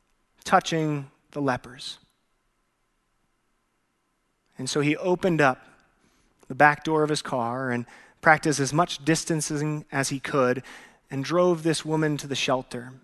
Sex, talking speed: male, 135 wpm